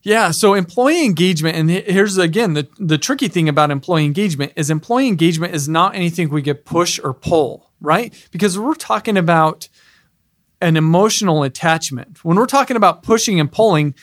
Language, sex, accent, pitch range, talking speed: English, male, American, 150-195 Hz, 170 wpm